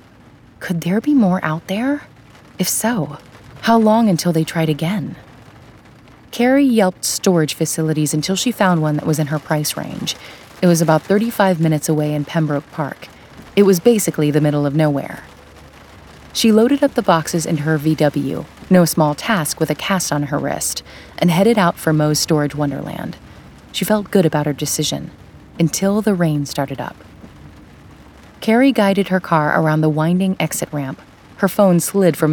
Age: 30-49